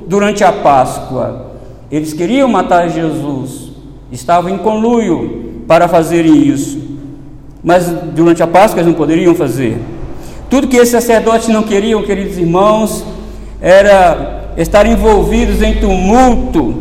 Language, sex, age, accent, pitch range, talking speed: Portuguese, male, 50-69, Brazilian, 175-220 Hz, 120 wpm